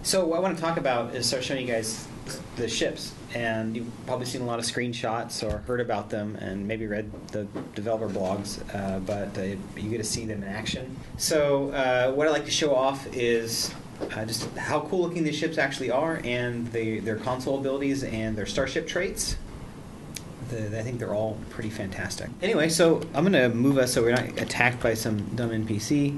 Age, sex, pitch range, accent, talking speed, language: 30-49, male, 110-130 Hz, American, 210 wpm, English